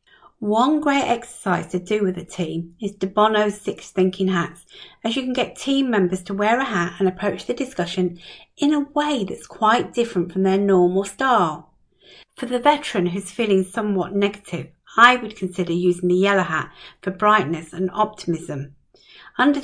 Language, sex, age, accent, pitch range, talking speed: English, female, 50-69, British, 180-235 Hz, 175 wpm